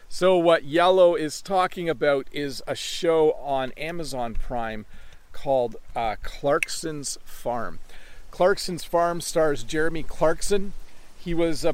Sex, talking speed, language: male, 125 wpm, English